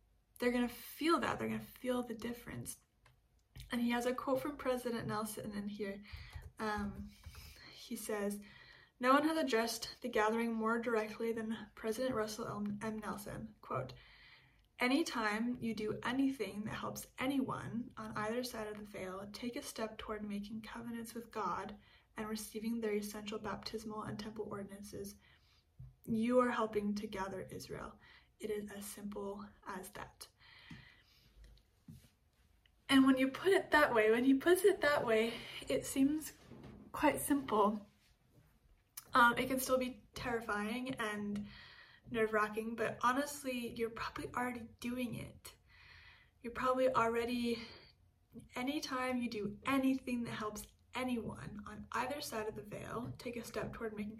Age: 10-29